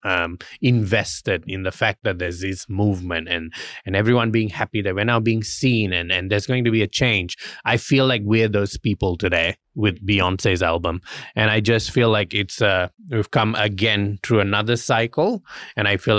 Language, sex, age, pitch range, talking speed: English, male, 20-39, 100-120 Hz, 195 wpm